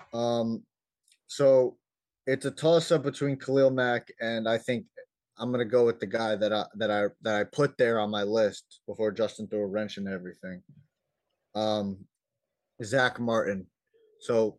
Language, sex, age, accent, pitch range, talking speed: English, male, 30-49, American, 115-140 Hz, 160 wpm